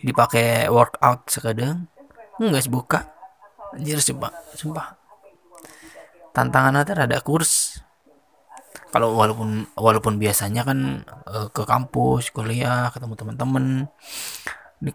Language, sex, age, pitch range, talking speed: Malay, male, 20-39, 115-155 Hz, 100 wpm